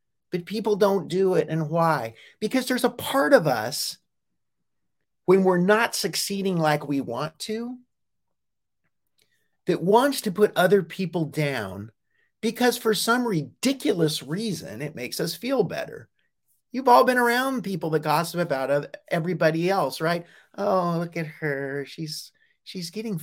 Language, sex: English, male